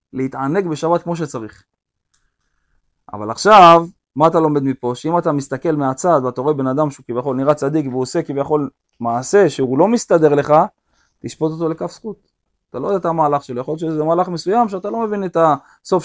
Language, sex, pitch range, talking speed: Hebrew, male, 125-170 Hz, 185 wpm